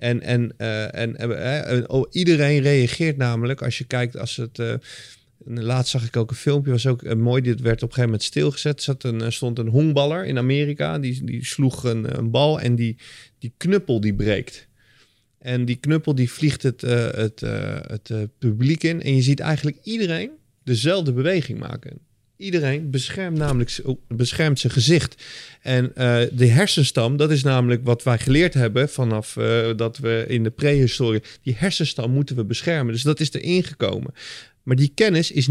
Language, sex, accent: Dutch, male, Dutch